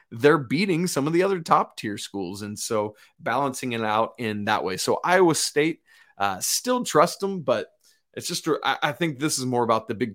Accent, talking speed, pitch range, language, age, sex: American, 205 wpm, 110-155 Hz, English, 30-49, male